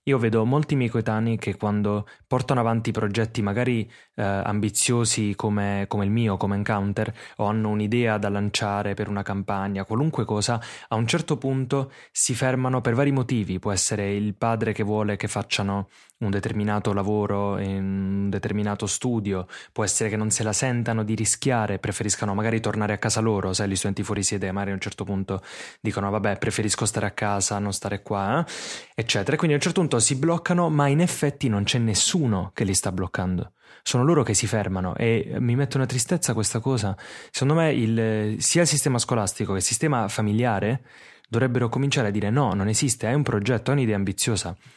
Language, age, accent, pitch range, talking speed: English, 20-39, Italian, 100-125 Hz, 190 wpm